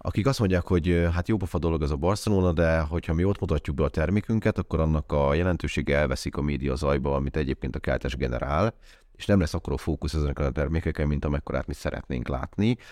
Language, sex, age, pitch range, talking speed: Hungarian, male, 30-49, 70-90 Hz, 210 wpm